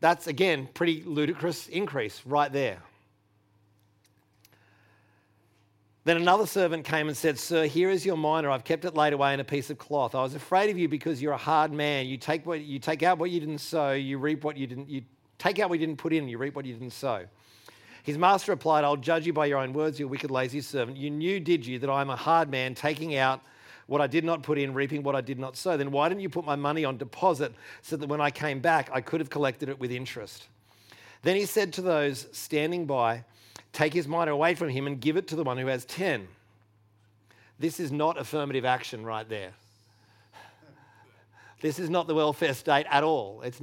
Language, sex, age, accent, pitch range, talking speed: English, male, 40-59, Australian, 125-160 Hz, 230 wpm